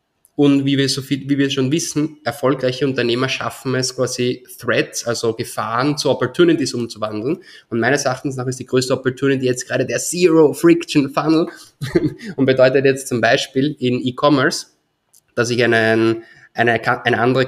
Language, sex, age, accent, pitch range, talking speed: German, male, 20-39, German, 120-145 Hz, 160 wpm